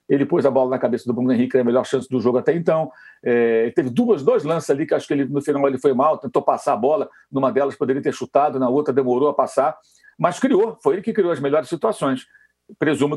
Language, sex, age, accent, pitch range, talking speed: Portuguese, male, 60-79, Brazilian, 140-225 Hz, 260 wpm